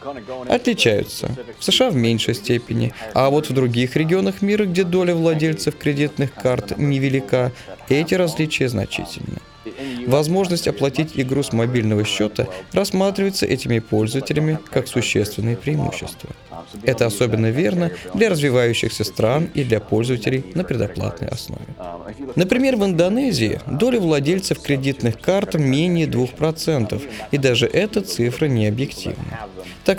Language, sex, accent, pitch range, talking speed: Russian, male, native, 115-165 Hz, 120 wpm